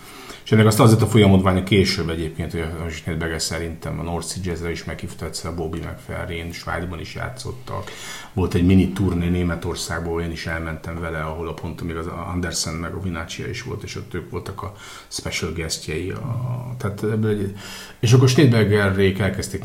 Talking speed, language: 185 wpm, Hungarian